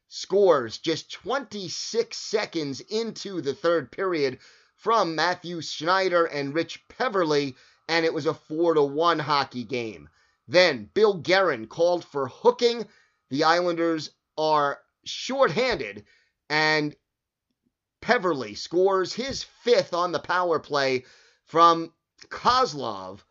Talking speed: 110 wpm